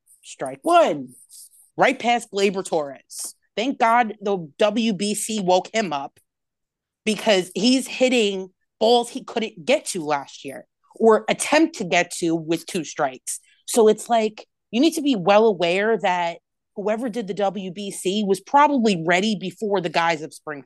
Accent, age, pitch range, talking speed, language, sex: American, 30-49, 185-260 Hz, 155 wpm, English, female